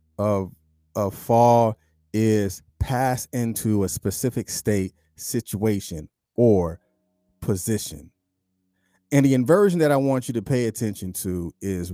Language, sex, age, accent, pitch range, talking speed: English, male, 30-49, American, 95-140 Hz, 120 wpm